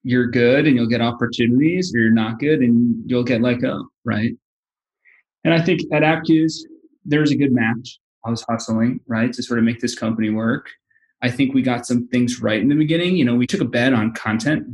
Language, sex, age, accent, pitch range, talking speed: English, male, 20-39, American, 115-125 Hz, 225 wpm